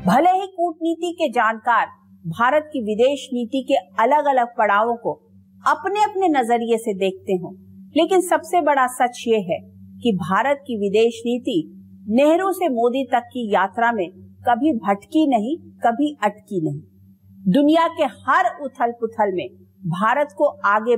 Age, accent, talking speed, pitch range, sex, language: 50-69, Indian, 140 wpm, 185-280 Hz, female, English